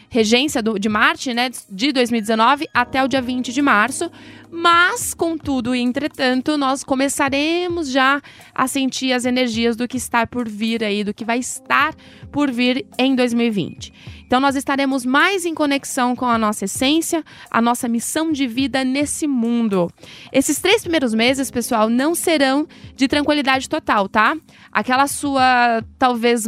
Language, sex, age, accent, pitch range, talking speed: Portuguese, female, 20-39, Brazilian, 240-295 Hz, 155 wpm